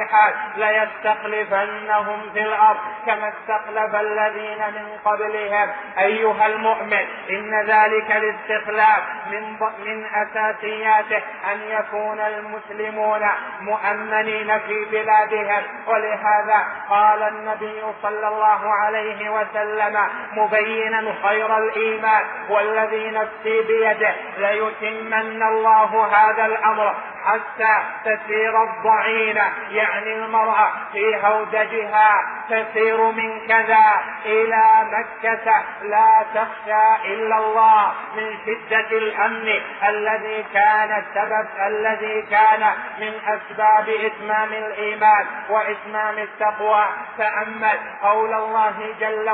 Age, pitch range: 30-49, 210-220 Hz